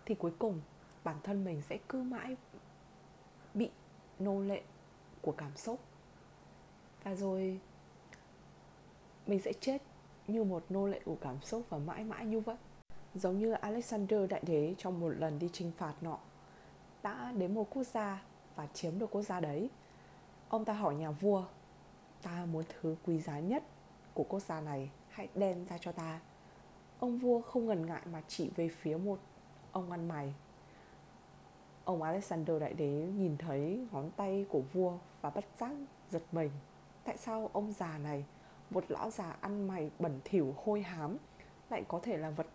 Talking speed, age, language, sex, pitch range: 170 wpm, 20-39, Vietnamese, female, 160-210 Hz